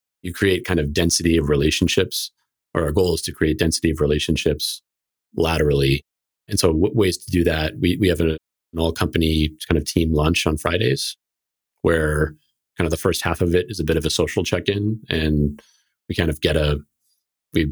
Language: English